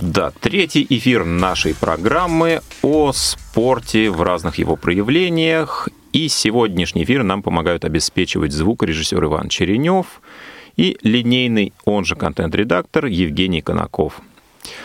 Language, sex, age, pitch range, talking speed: Russian, male, 30-49, 85-135 Hz, 110 wpm